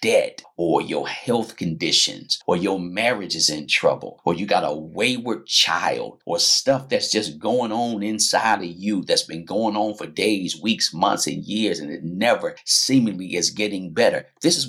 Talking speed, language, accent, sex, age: 185 wpm, English, American, male, 50-69